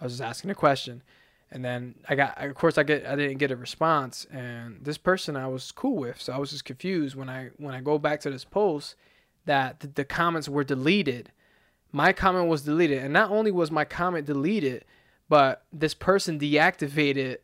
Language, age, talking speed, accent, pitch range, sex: English, 20-39, 210 wpm, American, 140-175 Hz, male